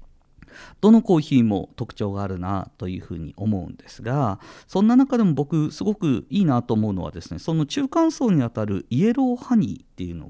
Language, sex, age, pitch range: Japanese, male, 50-69, 100-170 Hz